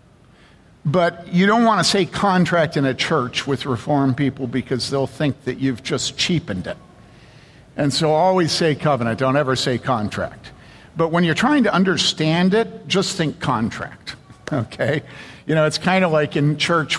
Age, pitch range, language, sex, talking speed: 60-79, 140-185 Hz, English, male, 175 wpm